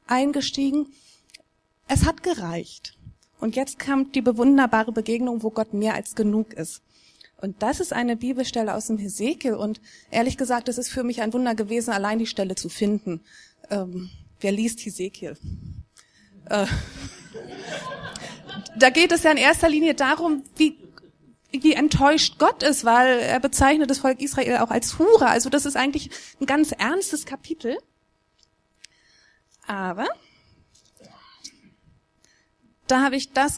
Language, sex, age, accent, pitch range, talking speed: German, female, 30-49, German, 210-275 Hz, 140 wpm